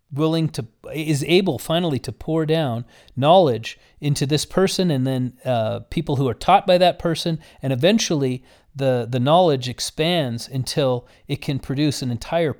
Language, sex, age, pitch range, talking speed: English, male, 40-59, 130-175 Hz, 160 wpm